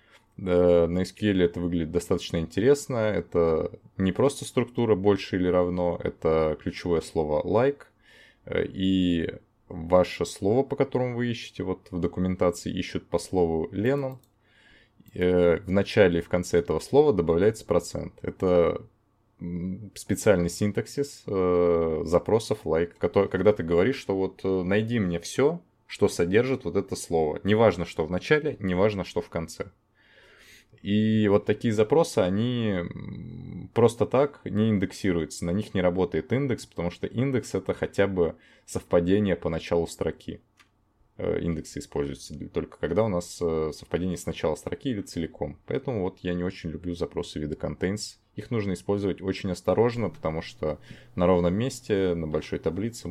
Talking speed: 140 wpm